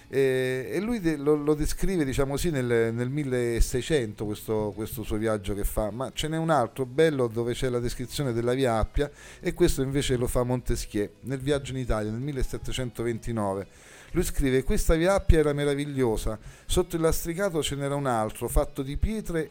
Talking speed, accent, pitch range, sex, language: 185 wpm, native, 115-155 Hz, male, Italian